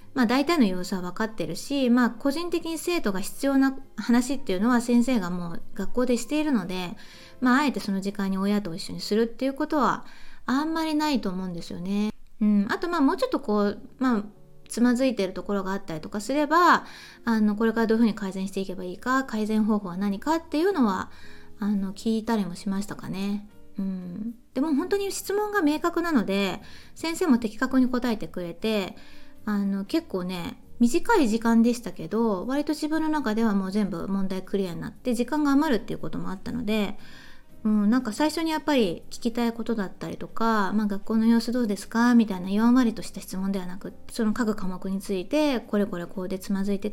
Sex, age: female, 20-39